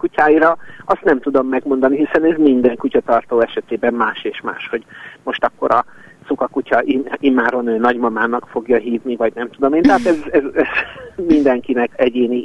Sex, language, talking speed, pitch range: male, Hungarian, 160 wpm, 120-145 Hz